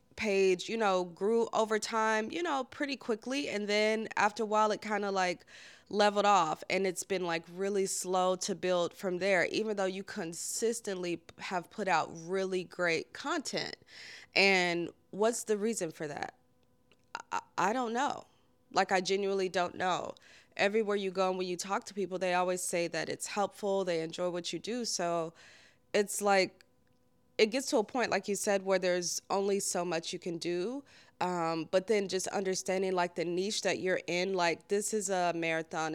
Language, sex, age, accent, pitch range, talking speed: English, female, 20-39, American, 180-210 Hz, 185 wpm